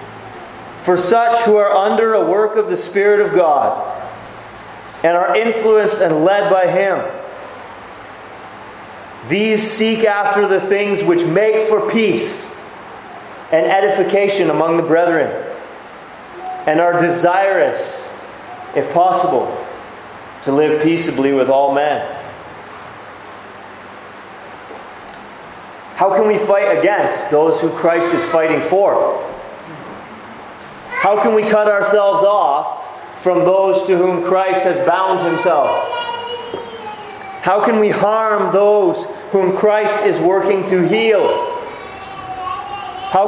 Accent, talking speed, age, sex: American, 110 wpm, 30-49, male